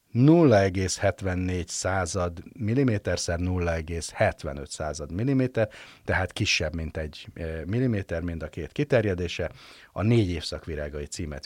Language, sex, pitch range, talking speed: Hungarian, male, 80-110 Hz, 100 wpm